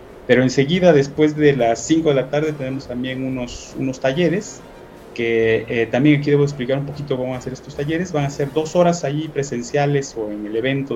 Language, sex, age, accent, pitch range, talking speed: Spanish, male, 30-49, Mexican, 115-145 Hz, 215 wpm